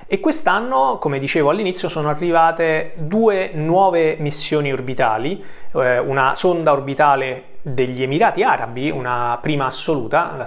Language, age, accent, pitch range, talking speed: Italian, 30-49, native, 130-170 Hz, 120 wpm